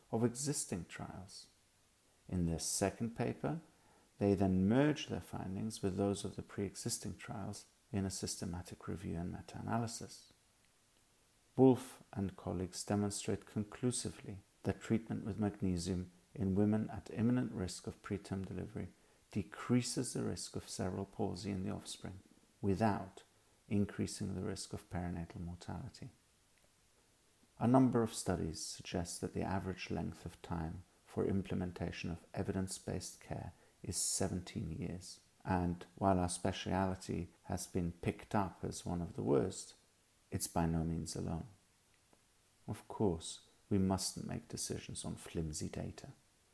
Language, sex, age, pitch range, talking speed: English, male, 50-69, 90-110 Hz, 135 wpm